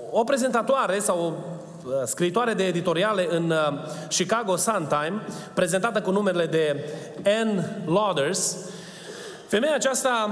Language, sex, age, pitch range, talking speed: Romanian, male, 30-49, 160-210 Hz, 110 wpm